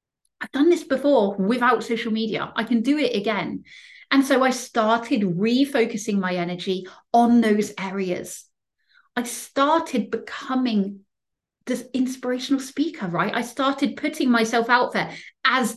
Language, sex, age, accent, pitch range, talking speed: English, female, 30-49, British, 220-290 Hz, 135 wpm